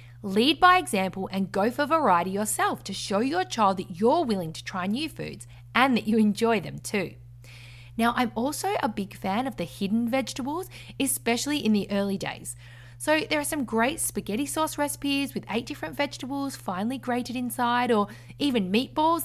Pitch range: 175-265 Hz